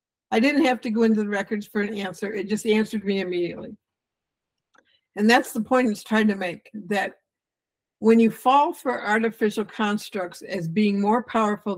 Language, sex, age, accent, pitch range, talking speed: English, female, 60-79, American, 195-240 Hz, 180 wpm